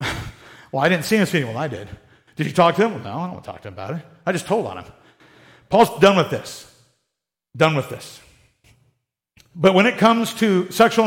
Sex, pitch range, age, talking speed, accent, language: male, 145-195 Hz, 50-69, 235 wpm, American, English